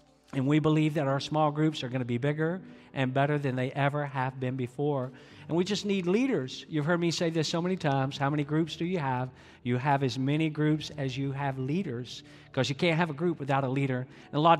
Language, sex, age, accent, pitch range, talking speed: English, male, 50-69, American, 135-160 Hz, 245 wpm